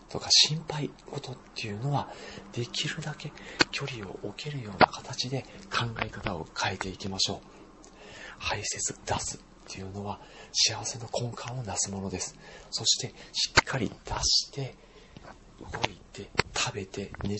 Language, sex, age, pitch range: Japanese, male, 40-59, 100-130 Hz